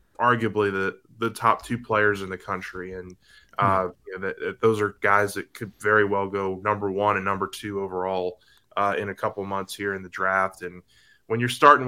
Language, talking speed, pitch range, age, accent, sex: English, 210 wpm, 100-110 Hz, 20-39, American, male